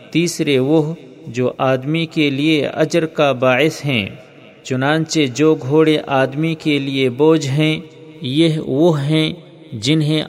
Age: 50-69